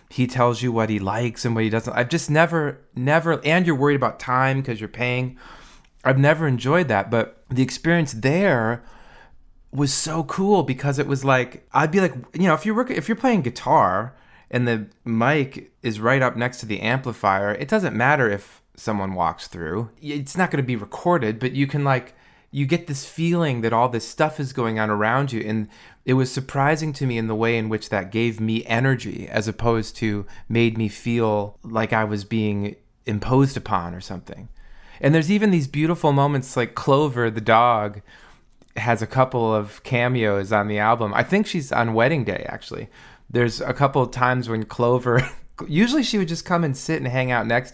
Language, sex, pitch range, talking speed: English, male, 110-145 Hz, 200 wpm